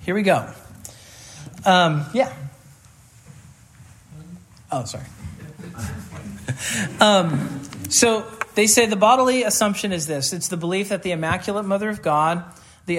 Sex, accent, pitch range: male, American, 140-205 Hz